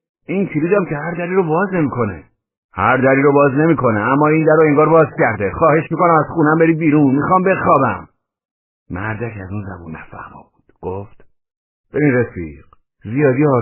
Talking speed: 170 wpm